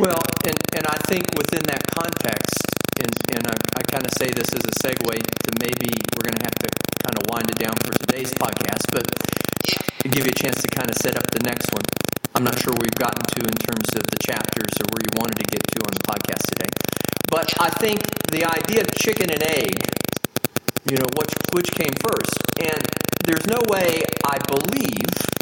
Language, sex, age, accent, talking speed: English, male, 40-59, American, 210 wpm